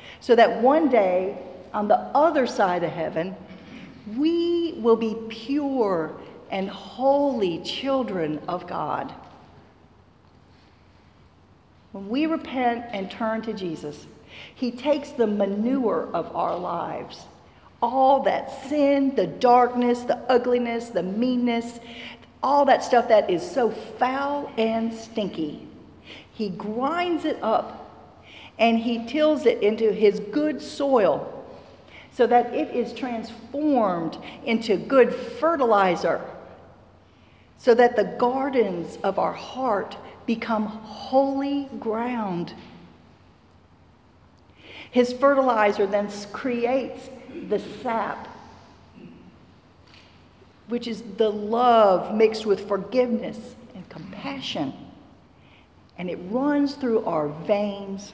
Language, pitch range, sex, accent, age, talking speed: English, 195-260 Hz, female, American, 50-69, 105 wpm